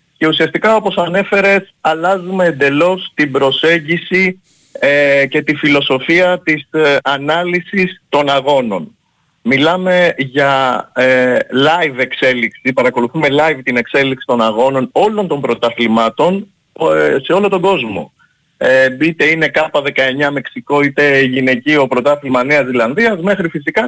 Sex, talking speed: male, 110 wpm